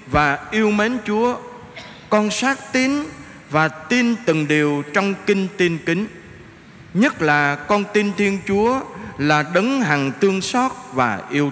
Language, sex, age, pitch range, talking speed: Vietnamese, male, 20-39, 145-210 Hz, 145 wpm